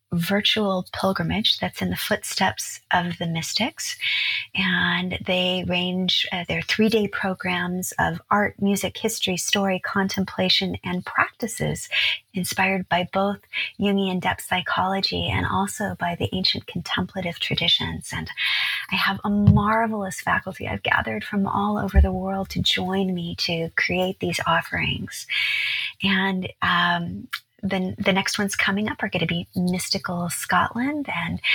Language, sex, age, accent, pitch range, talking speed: English, female, 30-49, American, 175-205 Hz, 135 wpm